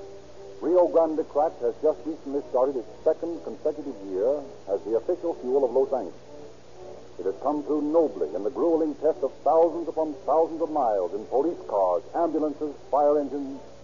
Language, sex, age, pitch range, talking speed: English, male, 50-69, 135-170 Hz, 170 wpm